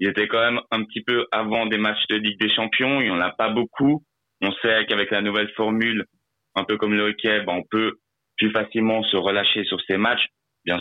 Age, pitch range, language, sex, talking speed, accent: 30-49, 105-120 Hz, French, male, 235 wpm, French